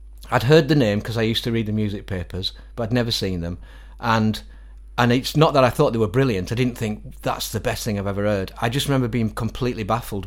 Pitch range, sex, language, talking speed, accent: 90-120 Hz, male, English, 250 wpm, British